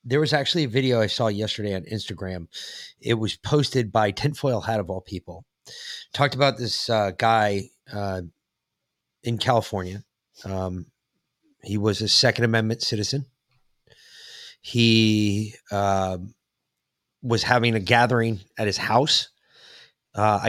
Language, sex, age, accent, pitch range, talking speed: English, male, 30-49, American, 105-135 Hz, 130 wpm